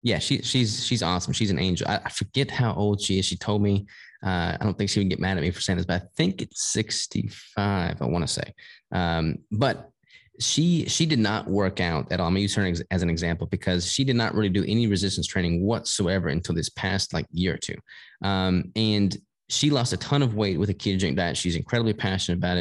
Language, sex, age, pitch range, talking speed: English, male, 20-39, 90-110 Hz, 240 wpm